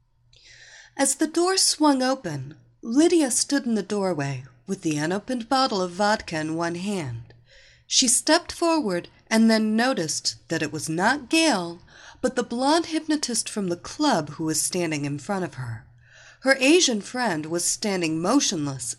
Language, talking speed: English, 160 wpm